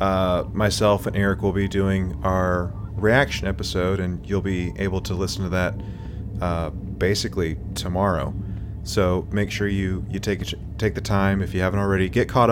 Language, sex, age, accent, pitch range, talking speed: English, male, 30-49, American, 90-105 Hz, 175 wpm